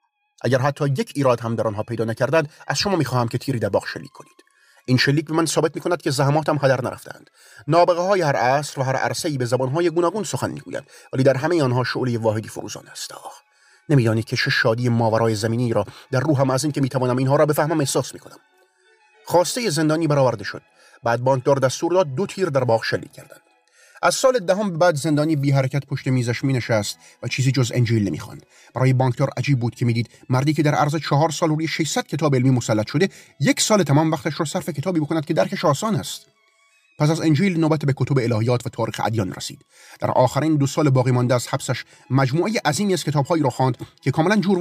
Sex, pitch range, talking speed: male, 125-160 Hz, 210 wpm